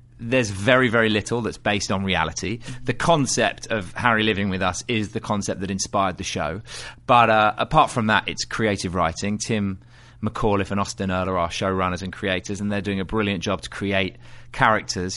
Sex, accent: male, British